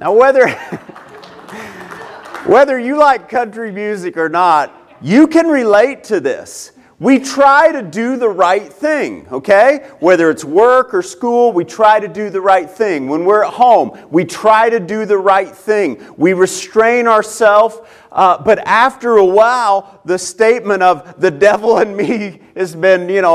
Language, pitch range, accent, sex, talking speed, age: English, 185-265 Hz, American, male, 155 wpm, 40-59